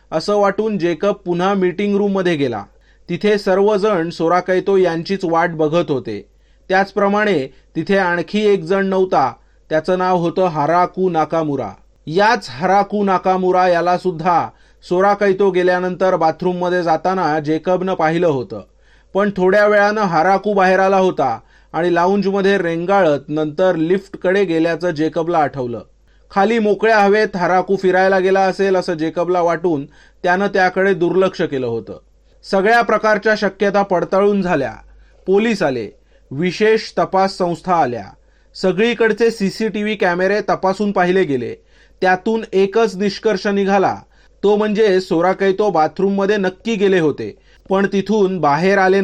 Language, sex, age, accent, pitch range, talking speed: Marathi, male, 30-49, native, 170-200 Hz, 125 wpm